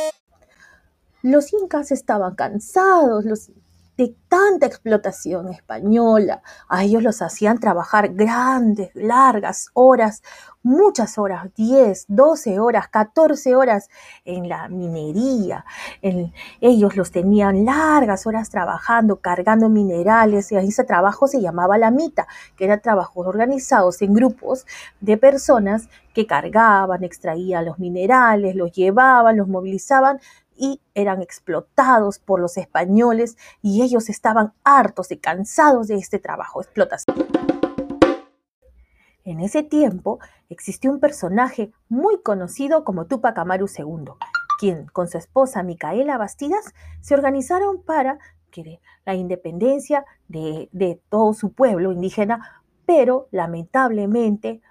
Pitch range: 185-260 Hz